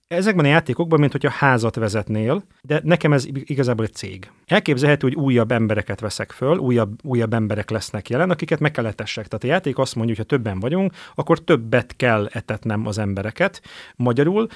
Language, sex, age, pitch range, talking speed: Hungarian, male, 30-49, 115-155 Hz, 180 wpm